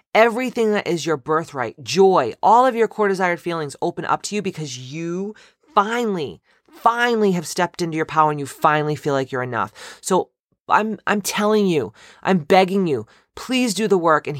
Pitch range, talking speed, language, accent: 145-190 Hz, 190 wpm, English, American